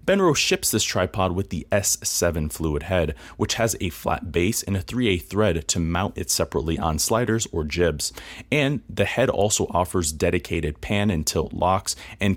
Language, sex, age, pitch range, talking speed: English, male, 30-49, 85-110 Hz, 180 wpm